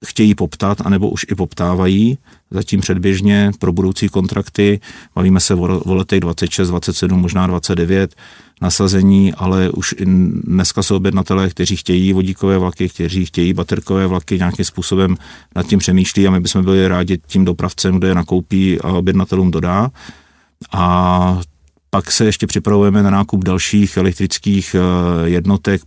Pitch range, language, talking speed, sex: 90-95 Hz, Czech, 145 wpm, male